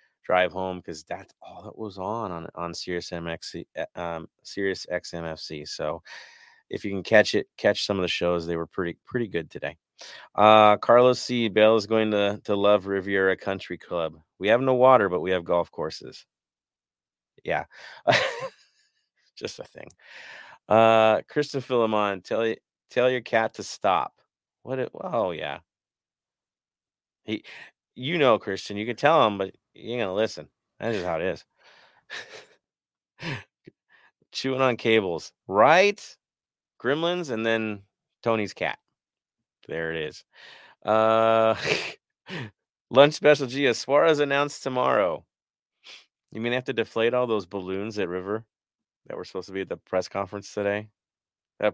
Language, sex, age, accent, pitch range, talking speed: English, male, 30-49, American, 95-125 Hz, 150 wpm